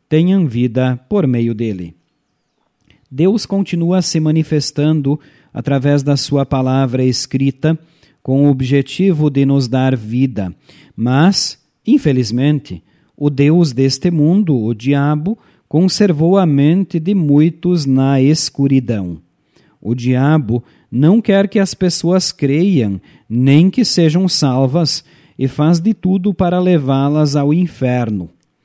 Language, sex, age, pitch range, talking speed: Portuguese, male, 40-59, 135-175 Hz, 115 wpm